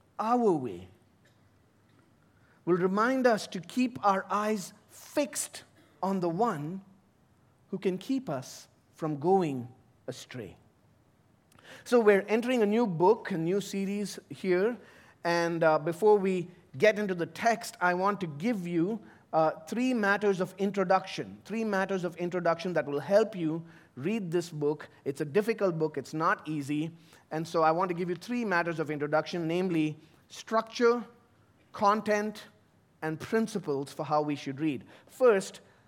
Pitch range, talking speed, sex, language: 165-225 Hz, 145 wpm, male, English